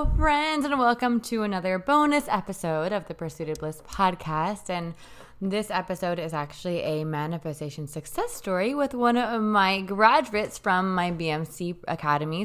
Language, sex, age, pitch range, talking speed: English, female, 20-39, 155-190 Hz, 150 wpm